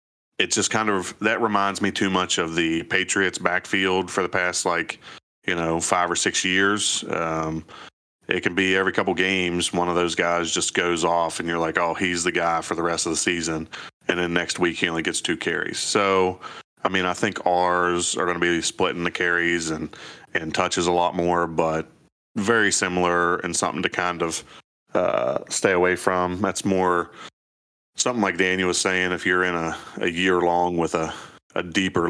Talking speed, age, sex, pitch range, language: 205 wpm, 30-49, male, 80-90 Hz, English